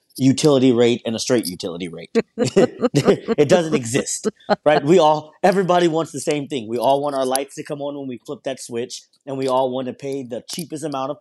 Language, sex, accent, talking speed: English, male, American, 220 wpm